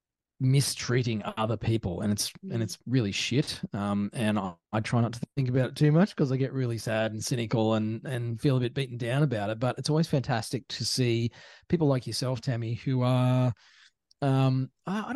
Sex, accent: male, Australian